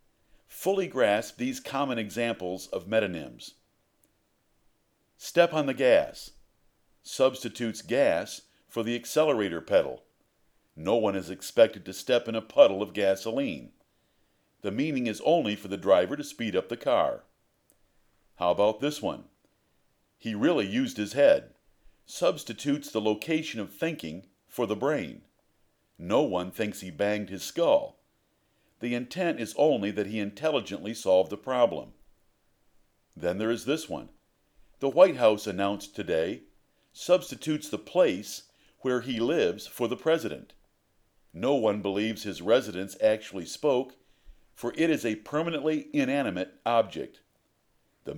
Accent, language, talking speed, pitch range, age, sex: American, English, 135 wpm, 105-150 Hz, 50-69, male